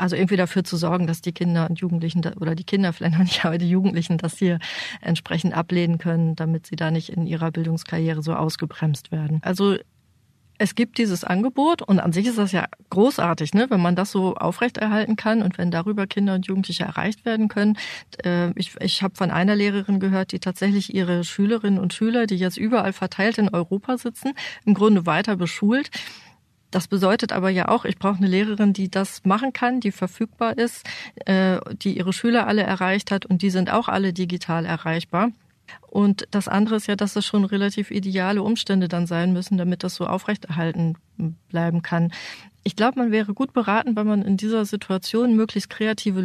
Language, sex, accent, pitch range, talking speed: German, female, German, 175-215 Hz, 195 wpm